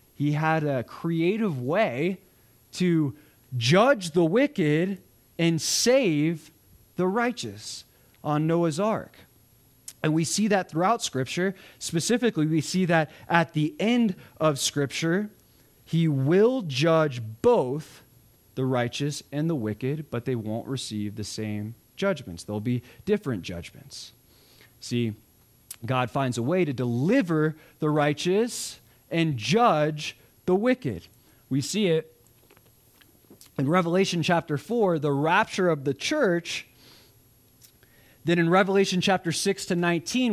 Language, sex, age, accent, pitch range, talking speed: English, male, 20-39, American, 125-185 Hz, 125 wpm